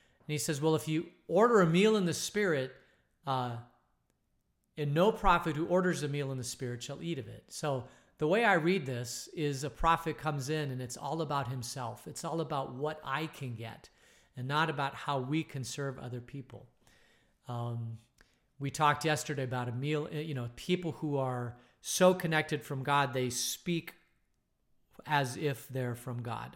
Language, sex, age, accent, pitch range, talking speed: English, male, 40-59, American, 125-150 Hz, 185 wpm